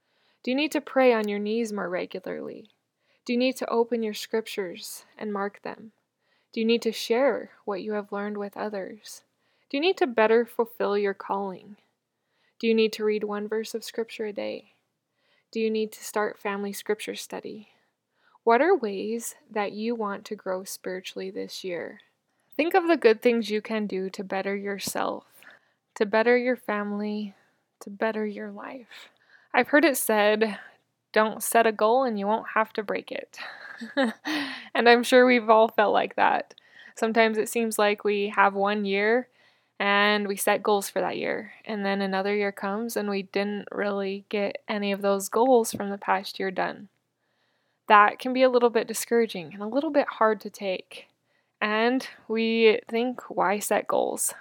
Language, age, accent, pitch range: English, 20-39, American, 205-235 Hz